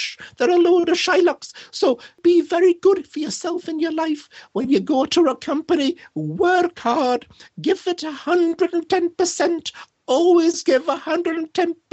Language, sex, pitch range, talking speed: English, male, 300-355 Hz, 145 wpm